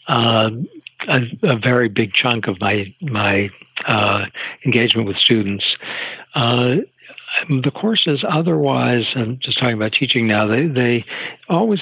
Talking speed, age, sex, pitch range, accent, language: 130 wpm, 60-79, male, 110-140 Hz, American, English